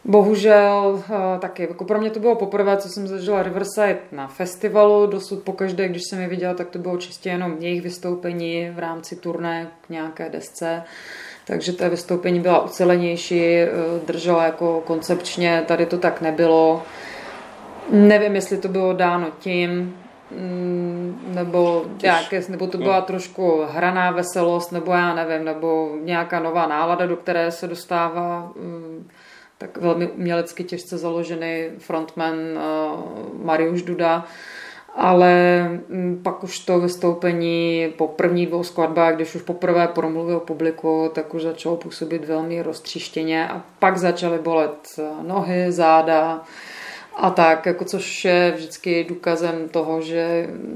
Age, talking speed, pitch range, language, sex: 30-49, 135 wpm, 165-180 Hz, Czech, female